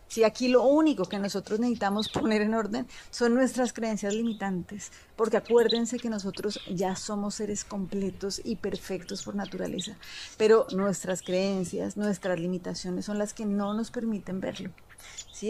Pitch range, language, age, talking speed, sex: 200-235 Hz, Spanish, 30-49, 150 wpm, female